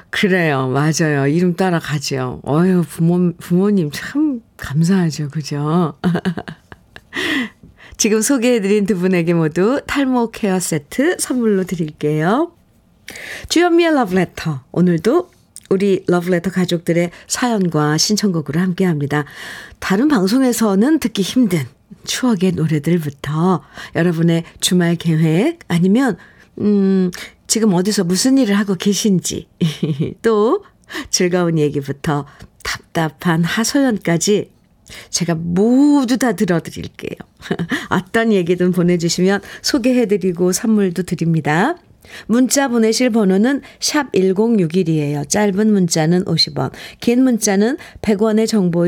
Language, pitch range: Korean, 160-220 Hz